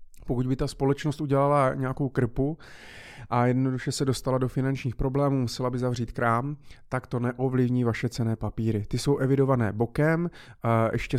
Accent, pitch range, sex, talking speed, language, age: native, 120-140 Hz, male, 155 wpm, Czech, 30-49